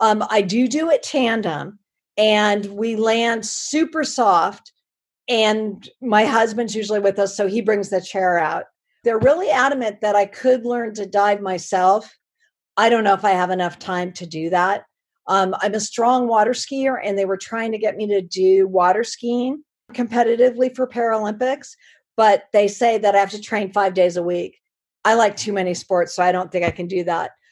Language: English